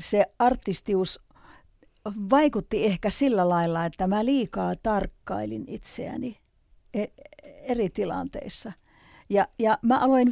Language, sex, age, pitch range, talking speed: Finnish, female, 50-69, 185-255 Hz, 100 wpm